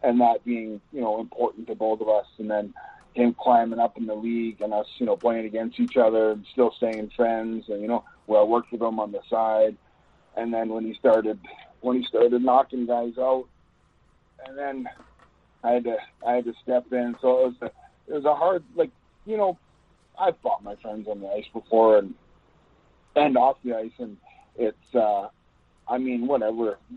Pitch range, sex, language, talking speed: 105-125 Hz, male, English, 205 wpm